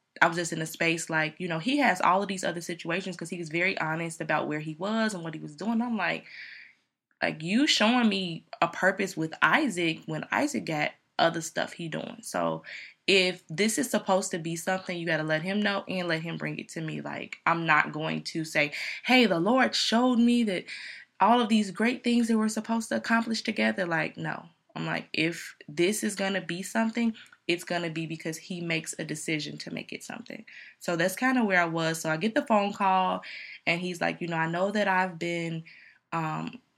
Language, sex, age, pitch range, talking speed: English, female, 20-39, 165-200 Hz, 225 wpm